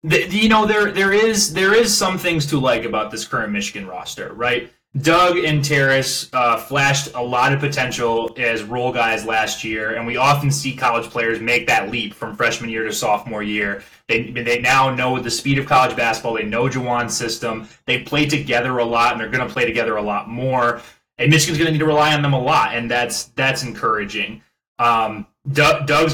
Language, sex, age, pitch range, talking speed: English, male, 20-39, 115-150 Hz, 205 wpm